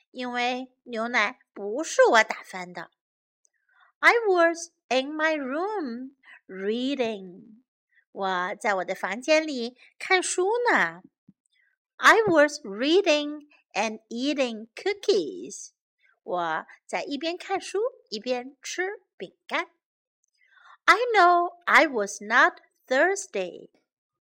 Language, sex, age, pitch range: Chinese, female, 50-69, 245-375 Hz